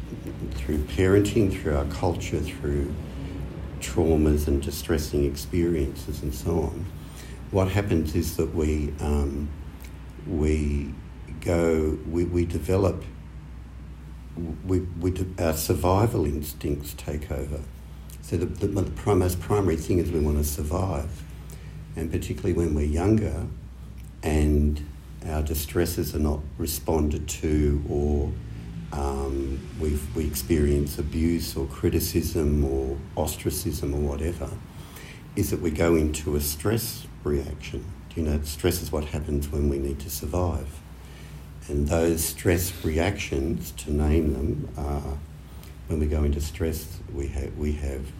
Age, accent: 60-79, Australian